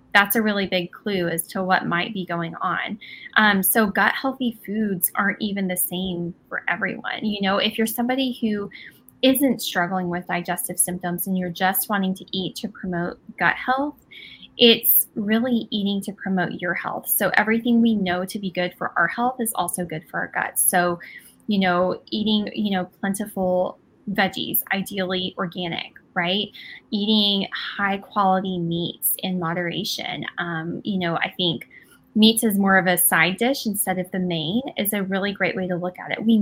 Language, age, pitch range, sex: English, 10-29, 180-215 Hz, female